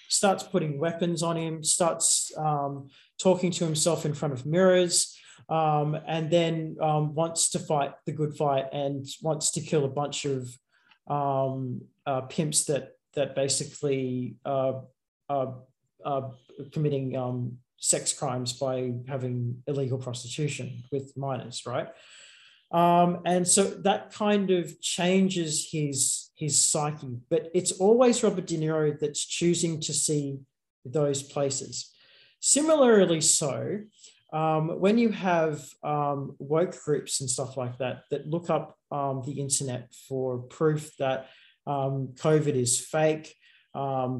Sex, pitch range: male, 135-170 Hz